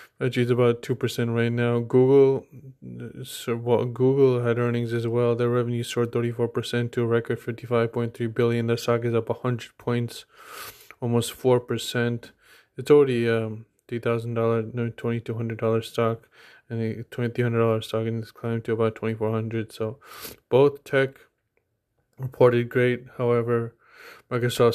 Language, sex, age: English, male, 20-39